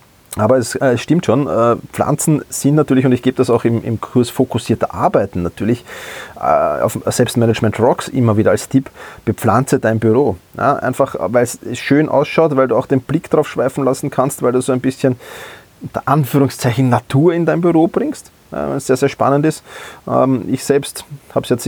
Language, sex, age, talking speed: German, male, 30-49, 185 wpm